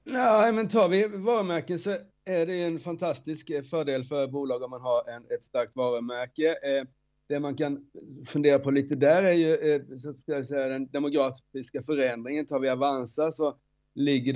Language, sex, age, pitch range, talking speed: Swedish, male, 30-49, 120-155 Hz, 170 wpm